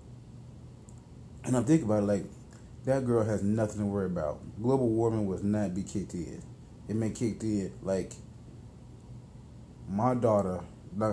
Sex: male